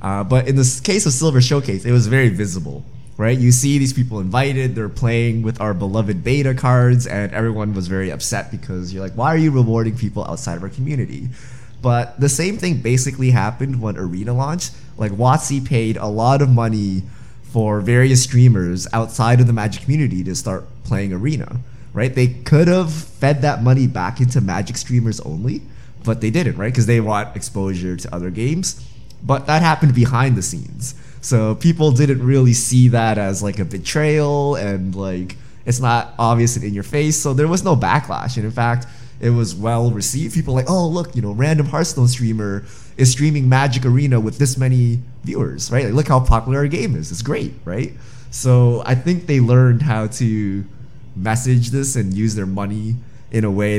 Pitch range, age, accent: 110-135 Hz, 20-39, American